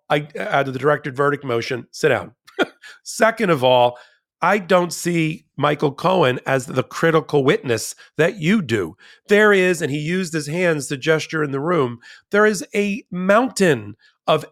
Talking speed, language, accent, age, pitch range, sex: 165 wpm, English, American, 40-59, 135-180 Hz, male